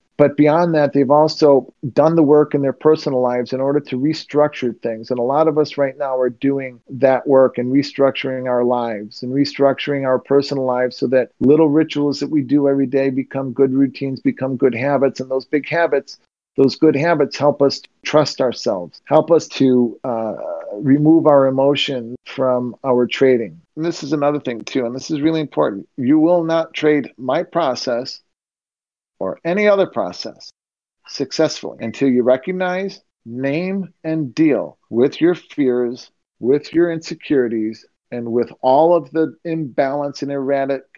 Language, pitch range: English, 130-155 Hz